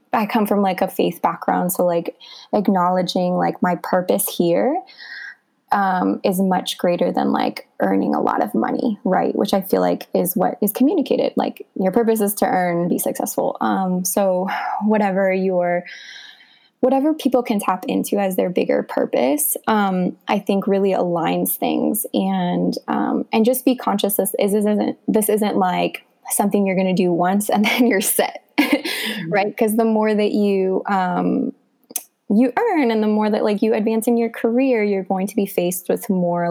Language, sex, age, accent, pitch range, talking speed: English, female, 20-39, American, 185-230 Hz, 180 wpm